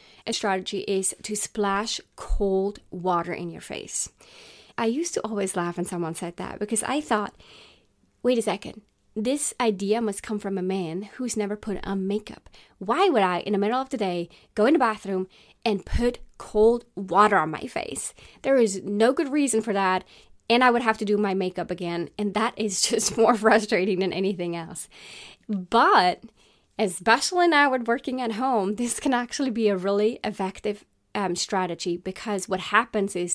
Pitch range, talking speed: 185-225 Hz, 180 wpm